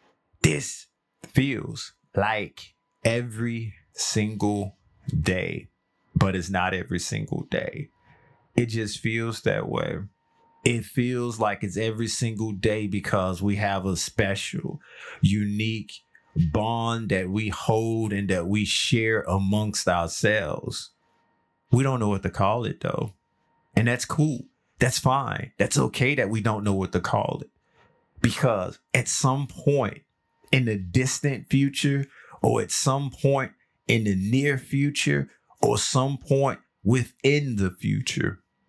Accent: American